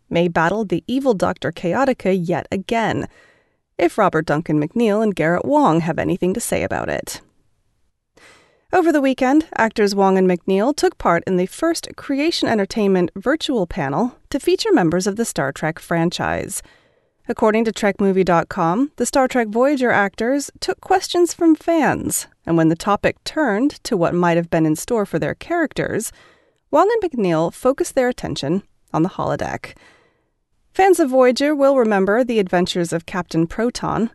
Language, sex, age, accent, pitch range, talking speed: English, female, 30-49, American, 170-275 Hz, 160 wpm